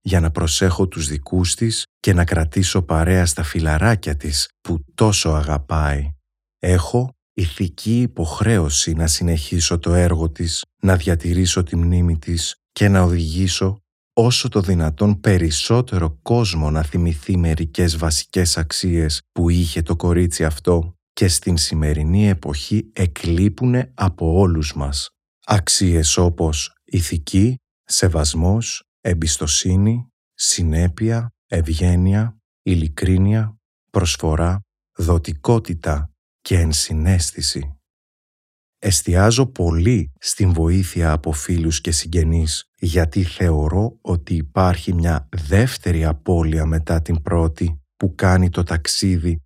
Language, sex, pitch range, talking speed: Greek, male, 80-95 Hz, 110 wpm